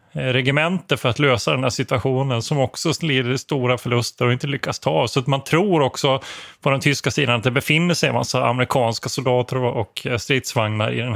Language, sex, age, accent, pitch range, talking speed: Swedish, male, 30-49, native, 125-145 Hz, 200 wpm